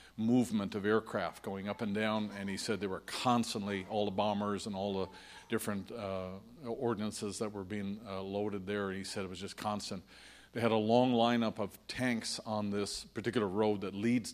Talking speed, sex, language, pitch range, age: 200 wpm, male, English, 100-115 Hz, 50-69